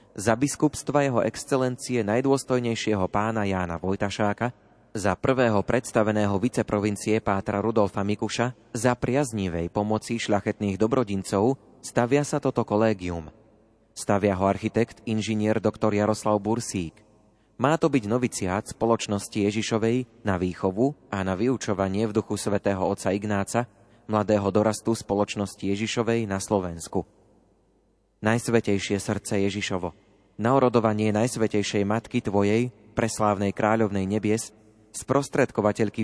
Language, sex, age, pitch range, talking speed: Slovak, male, 30-49, 100-115 Hz, 110 wpm